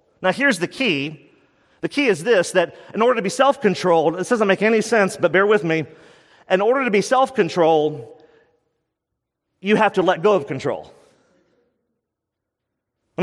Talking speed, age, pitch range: 165 wpm, 40-59, 175-215 Hz